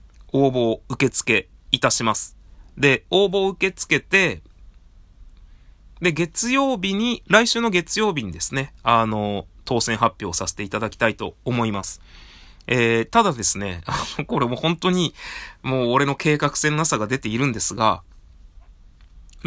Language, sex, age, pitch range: Japanese, male, 20-39, 100-165 Hz